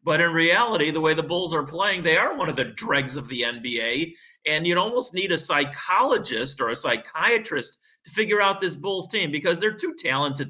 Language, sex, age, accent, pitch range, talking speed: English, male, 40-59, American, 140-180 Hz, 215 wpm